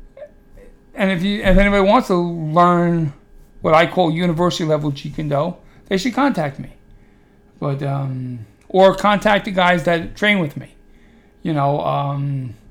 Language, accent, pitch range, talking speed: English, American, 150-190 Hz, 150 wpm